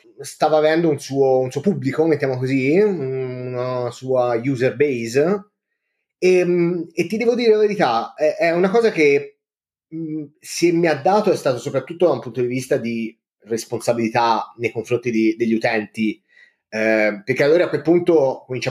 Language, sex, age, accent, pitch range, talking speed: Italian, male, 30-49, native, 120-160 Hz, 165 wpm